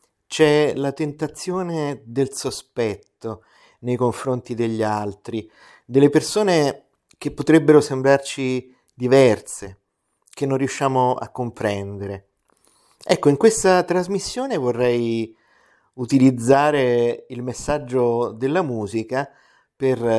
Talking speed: 90 wpm